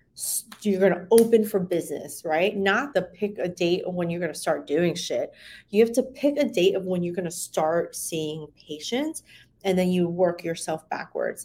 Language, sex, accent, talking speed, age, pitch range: English, female, American, 210 wpm, 30-49, 160-195 Hz